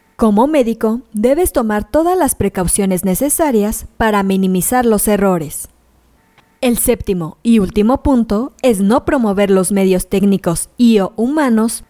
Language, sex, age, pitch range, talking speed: Spanish, female, 20-39, 185-245 Hz, 130 wpm